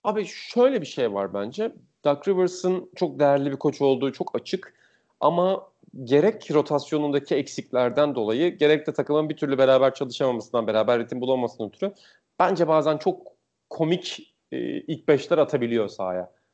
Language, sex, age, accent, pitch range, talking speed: Turkish, male, 40-59, native, 125-155 Hz, 145 wpm